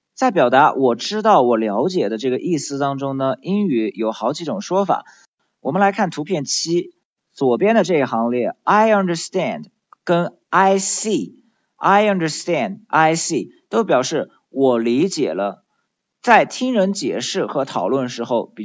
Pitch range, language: 125-195 Hz, Chinese